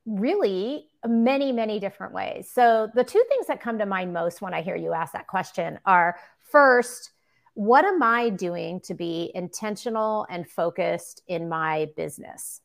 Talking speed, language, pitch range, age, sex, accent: 165 wpm, English, 175-230 Hz, 40-59, female, American